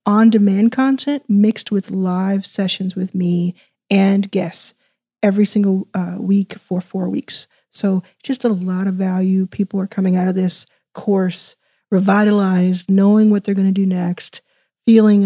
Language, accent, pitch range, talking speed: English, American, 185-220 Hz, 155 wpm